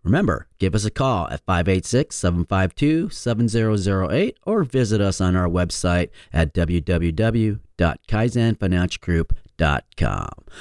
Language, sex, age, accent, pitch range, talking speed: English, male, 40-59, American, 90-125 Hz, 85 wpm